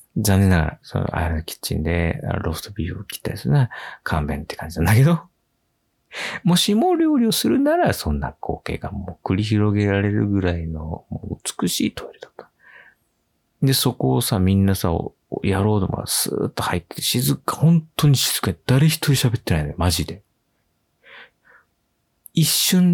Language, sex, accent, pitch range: Japanese, male, native, 90-145 Hz